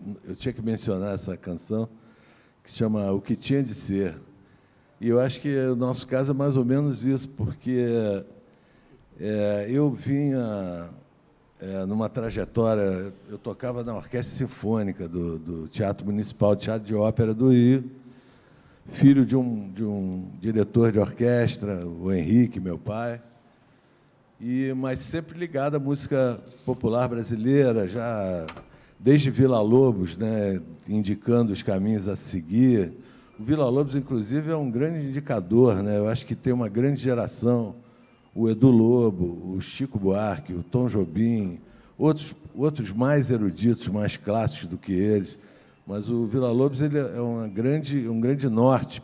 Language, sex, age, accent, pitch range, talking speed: Portuguese, male, 60-79, Brazilian, 100-130 Hz, 145 wpm